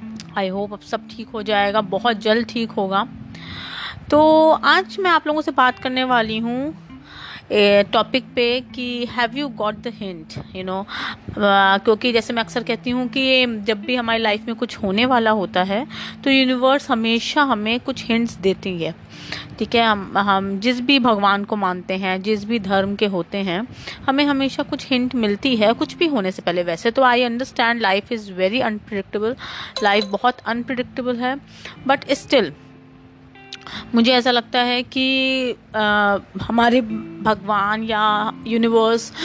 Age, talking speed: 30-49, 160 wpm